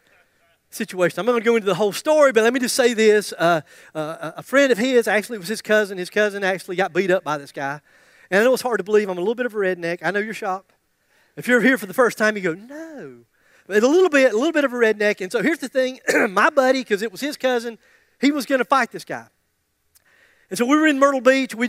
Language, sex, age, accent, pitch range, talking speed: English, male, 40-59, American, 205-275 Hz, 275 wpm